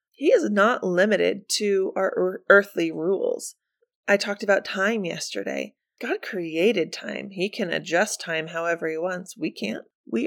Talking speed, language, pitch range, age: 150 wpm, English, 175-230 Hz, 20-39